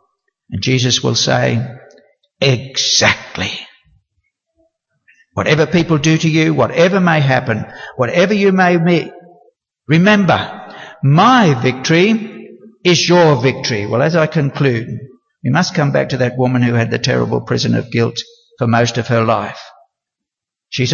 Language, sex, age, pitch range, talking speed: English, male, 60-79, 130-180 Hz, 135 wpm